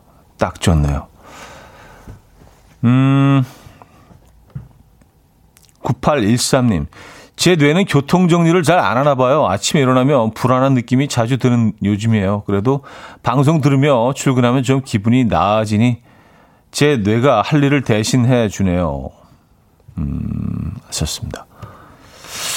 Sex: male